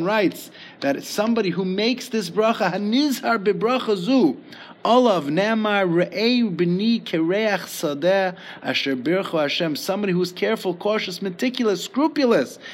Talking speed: 160 wpm